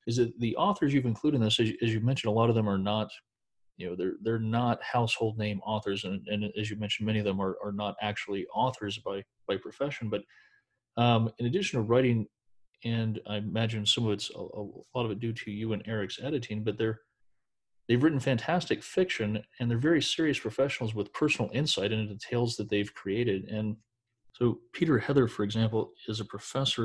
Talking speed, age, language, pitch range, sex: 210 wpm, 40-59, English, 105-120 Hz, male